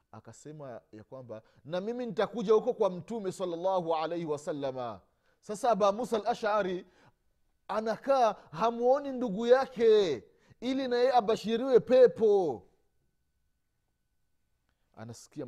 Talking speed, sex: 95 wpm, male